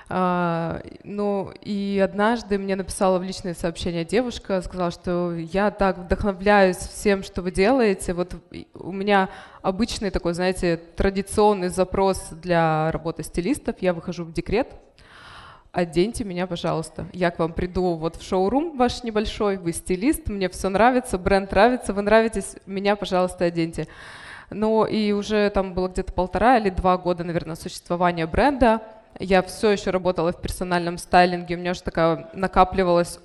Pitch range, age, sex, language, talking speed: 175-205 Hz, 20-39, female, Russian, 150 wpm